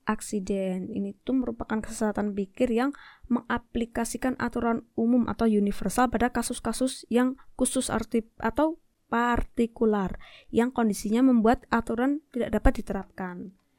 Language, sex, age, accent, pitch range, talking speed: Indonesian, female, 20-39, native, 205-245 Hz, 115 wpm